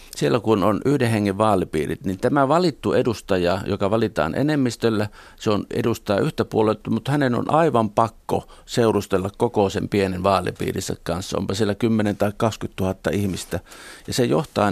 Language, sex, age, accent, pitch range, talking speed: Finnish, male, 50-69, native, 95-115 Hz, 165 wpm